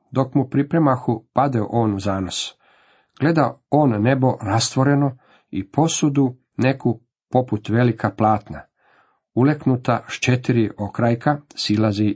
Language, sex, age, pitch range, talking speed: Croatian, male, 50-69, 110-145 Hz, 110 wpm